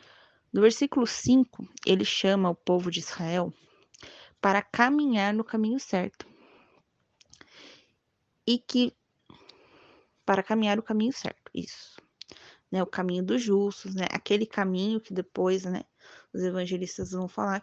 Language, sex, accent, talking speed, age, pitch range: Portuguese, female, Brazilian, 125 wpm, 20-39, 180-215 Hz